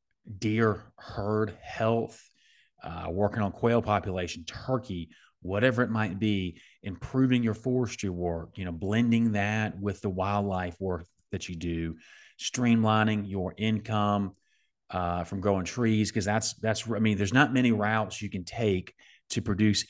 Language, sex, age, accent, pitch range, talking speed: English, male, 30-49, American, 100-115 Hz, 150 wpm